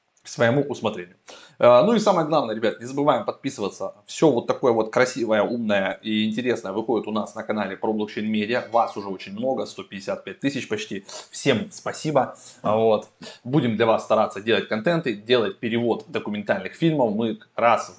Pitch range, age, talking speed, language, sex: 105-150 Hz, 20-39, 160 wpm, Russian, male